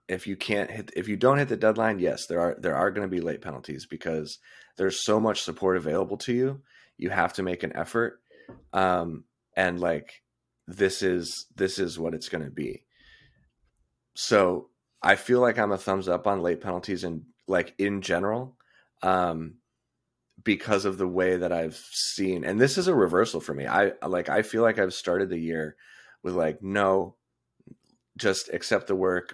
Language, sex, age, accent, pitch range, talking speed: English, male, 30-49, American, 85-105 Hz, 190 wpm